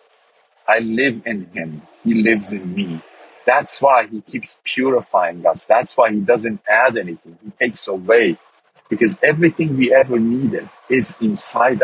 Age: 50-69